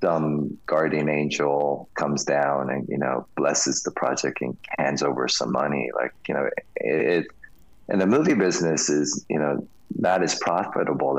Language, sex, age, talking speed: English, male, 30-49, 165 wpm